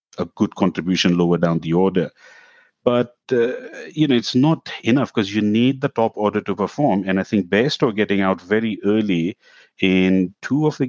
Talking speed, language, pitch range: 185 wpm, English, 85-105 Hz